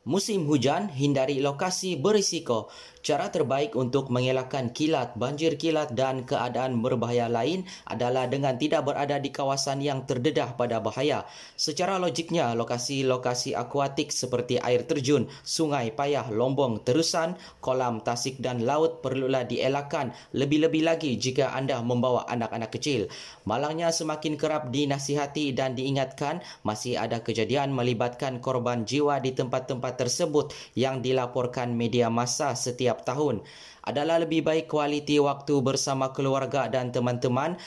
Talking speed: 130 wpm